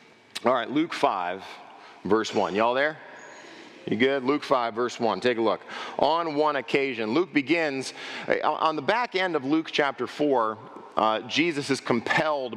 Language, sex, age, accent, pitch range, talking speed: English, male, 40-59, American, 125-155 Hz, 160 wpm